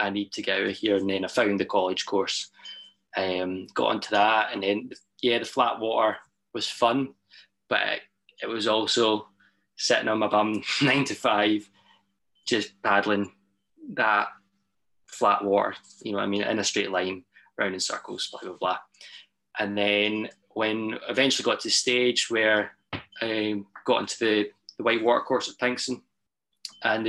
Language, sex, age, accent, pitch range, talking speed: English, male, 20-39, British, 105-120 Hz, 170 wpm